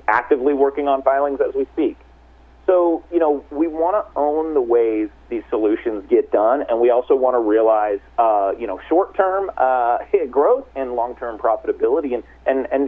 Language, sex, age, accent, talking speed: English, male, 30-49, American, 175 wpm